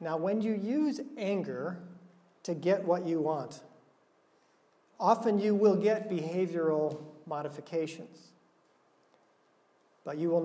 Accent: American